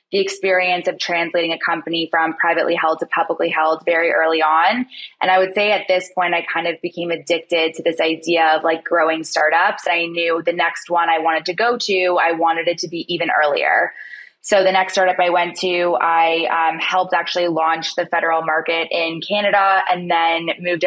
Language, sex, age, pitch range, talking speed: English, female, 20-39, 165-180 Hz, 205 wpm